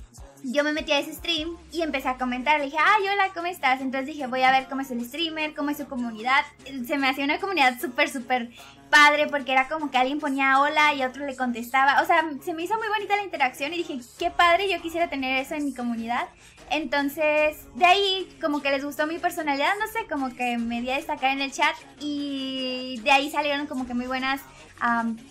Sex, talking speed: female, 230 wpm